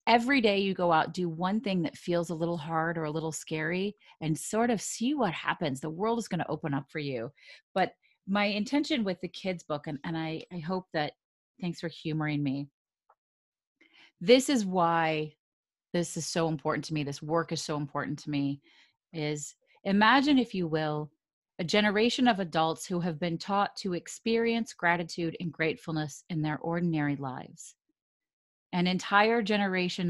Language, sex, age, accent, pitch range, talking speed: English, female, 30-49, American, 155-200 Hz, 180 wpm